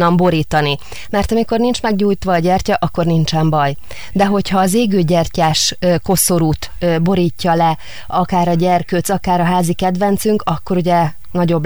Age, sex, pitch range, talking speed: 30-49, female, 160-190 Hz, 145 wpm